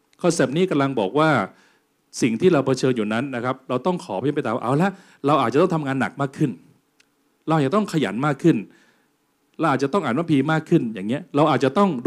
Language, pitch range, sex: Thai, 115-155 Hz, male